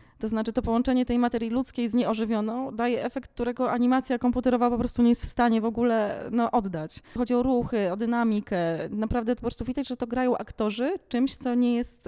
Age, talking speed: 20-39, 205 wpm